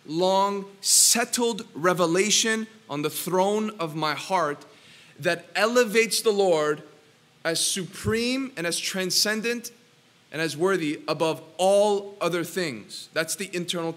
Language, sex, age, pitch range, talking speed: English, male, 30-49, 155-200 Hz, 120 wpm